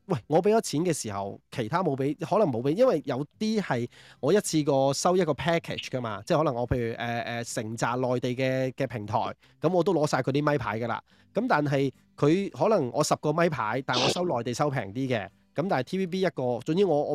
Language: Chinese